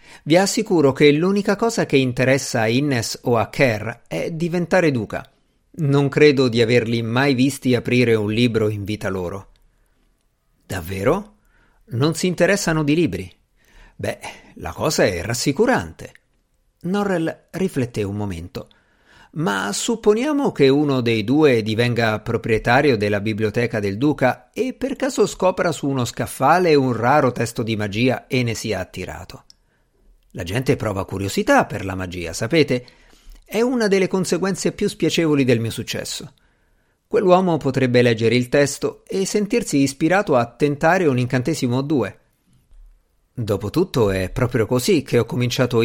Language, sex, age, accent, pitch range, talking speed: Italian, male, 50-69, native, 110-160 Hz, 140 wpm